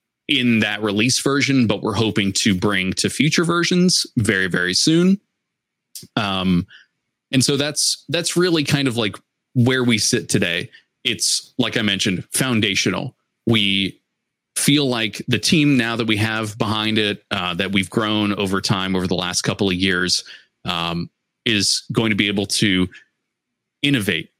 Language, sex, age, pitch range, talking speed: English, male, 20-39, 95-125 Hz, 155 wpm